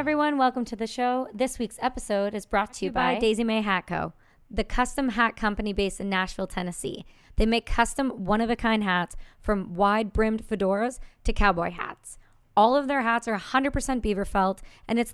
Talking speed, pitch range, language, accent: 180 wpm, 200-240 Hz, English, American